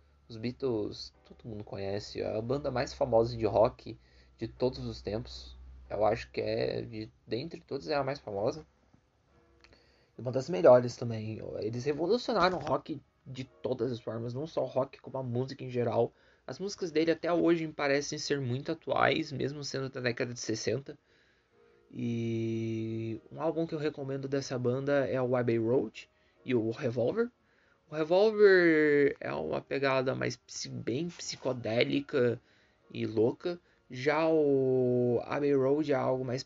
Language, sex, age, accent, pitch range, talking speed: Portuguese, male, 20-39, Brazilian, 115-140 Hz, 155 wpm